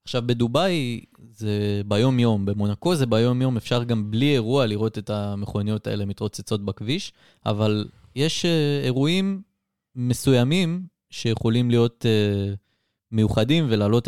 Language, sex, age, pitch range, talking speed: Hebrew, male, 20-39, 105-135 Hz, 105 wpm